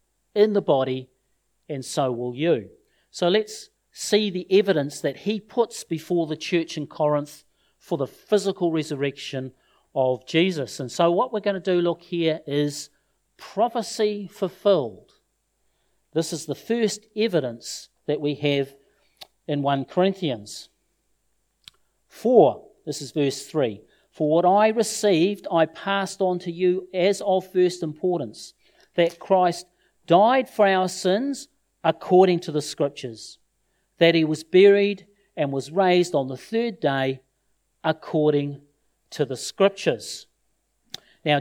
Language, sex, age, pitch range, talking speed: English, male, 50-69, 145-190 Hz, 135 wpm